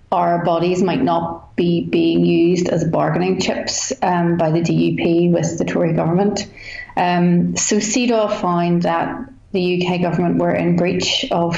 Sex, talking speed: female, 155 wpm